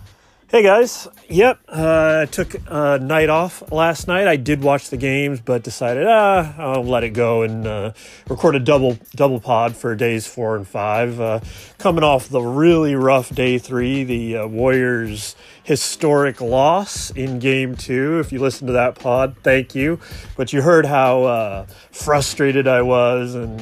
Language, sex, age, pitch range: English, male, 30-49, 115-150 Hz